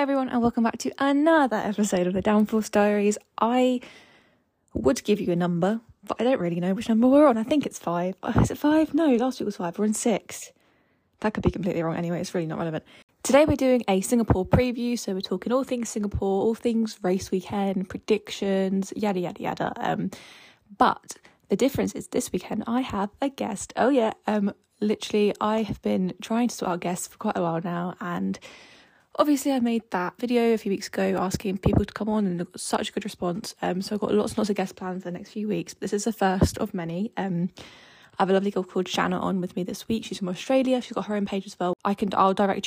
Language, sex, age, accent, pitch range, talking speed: English, female, 10-29, British, 185-230 Hz, 235 wpm